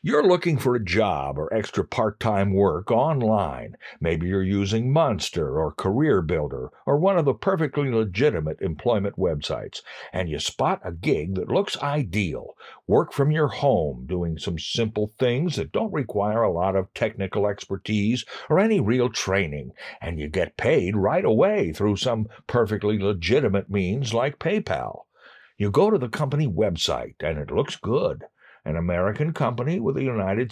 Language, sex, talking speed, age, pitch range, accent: English, male, 160 wpm, 60-79, 95-150 Hz, American